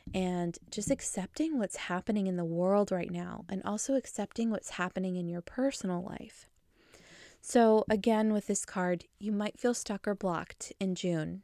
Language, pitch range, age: English, 175-215 Hz, 20-39